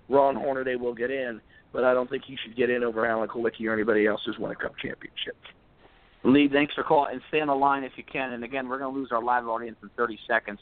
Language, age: English, 40-59